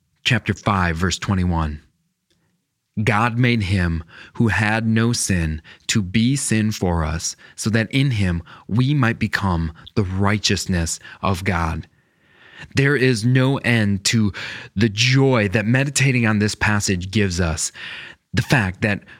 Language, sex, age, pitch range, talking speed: English, male, 20-39, 100-135 Hz, 140 wpm